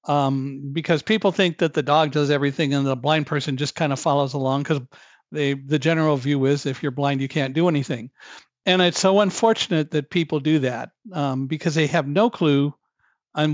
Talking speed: 200 wpm